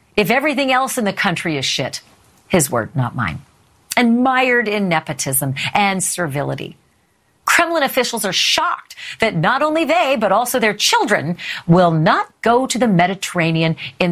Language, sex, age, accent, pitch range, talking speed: English, female, 40-59, American, 155-235 Hz, 155 wpm